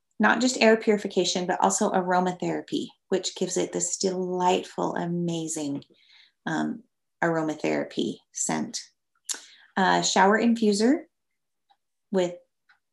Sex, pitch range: female, 175-220 Hz